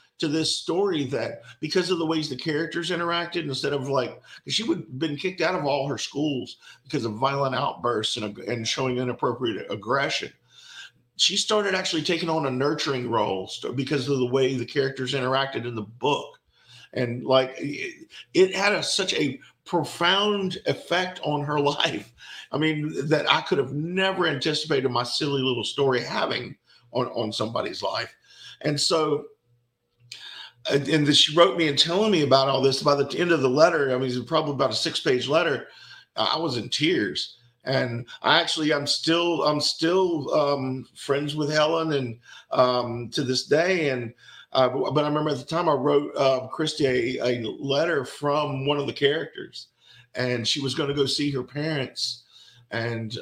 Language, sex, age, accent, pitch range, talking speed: English, male, 50-69, American, 130-160 Hz, 180 wpm